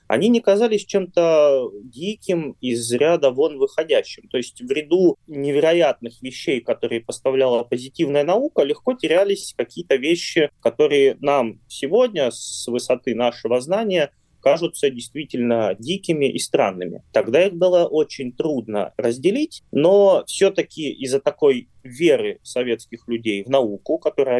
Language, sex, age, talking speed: Russian, male, 20-39, 125 wpm